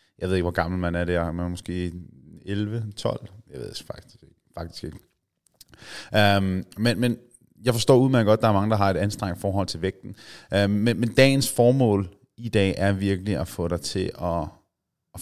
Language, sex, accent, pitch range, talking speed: Danish, male, native, 95-115 Hz, 200 wpm